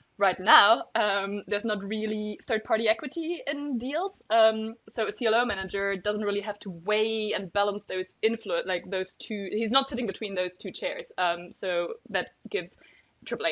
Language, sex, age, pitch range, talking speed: English, female, 20-39, 180-225 Hz, 175 wpm